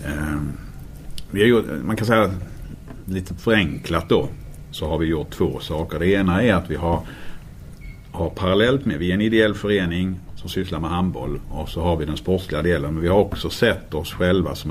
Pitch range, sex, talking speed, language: 75-90 Hz, male, 195 wpm, Swedish